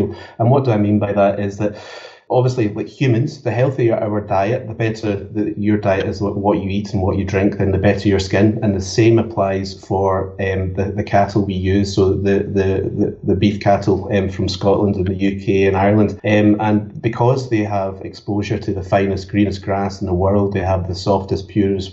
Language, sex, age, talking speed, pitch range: English, male, 30-49, 215 wpm, 95-105 Hz